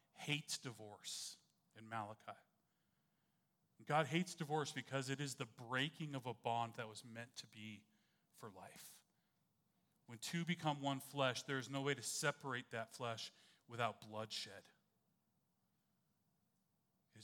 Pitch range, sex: 115-140 Hz, male